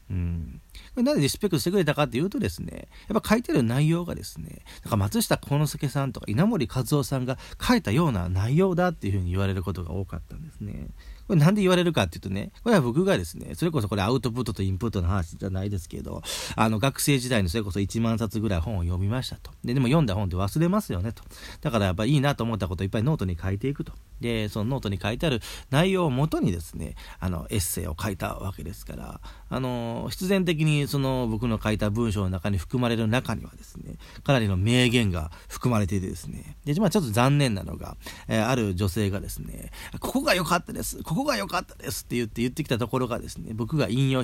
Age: 40-59